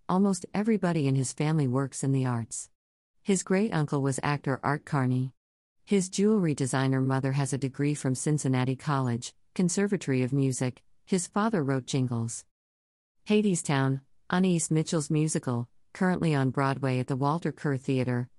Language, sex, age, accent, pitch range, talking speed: English, female, 50-69, American, 130-155 Hz, 145 wpm